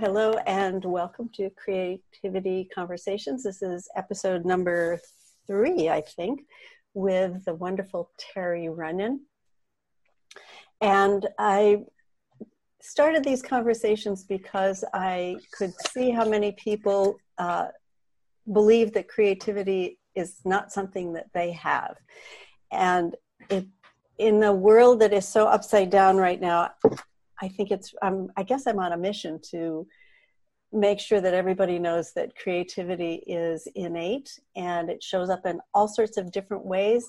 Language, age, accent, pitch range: English, 60-79, American, 185-220 Hz